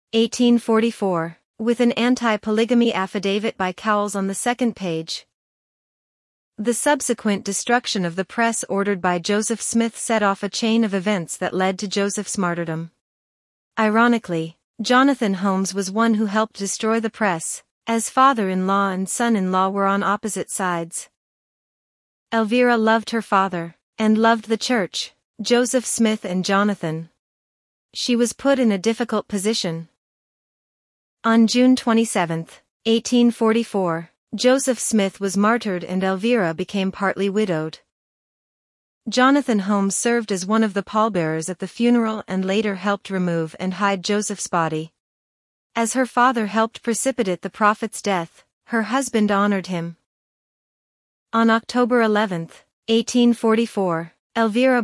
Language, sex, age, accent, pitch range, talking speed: English, female, 40-59, American, 190-230 Hz, 135 wpm